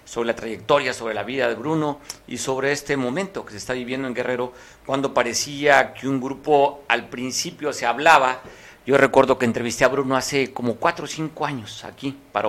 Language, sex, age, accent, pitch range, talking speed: Spanish, male, 50-69, Mexican, 120-145 Hz, 195 wpm